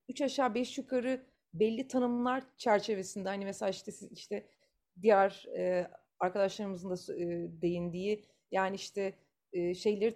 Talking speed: 130 wpm